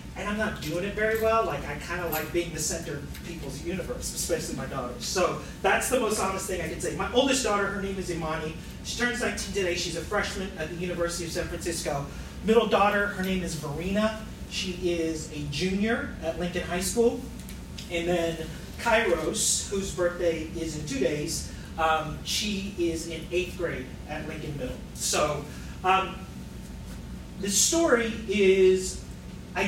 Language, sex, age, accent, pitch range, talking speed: English, male, 30-49, American, 160-205 Hz, 180 wpm